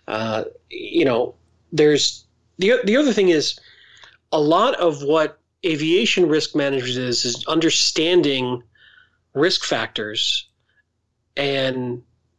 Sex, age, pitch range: male, 40-59, 125-170 Hz